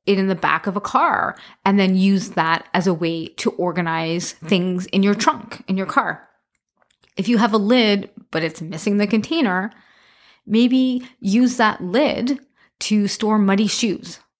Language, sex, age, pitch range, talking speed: English, female, 20-39, 180-235 Hz, 170 wpm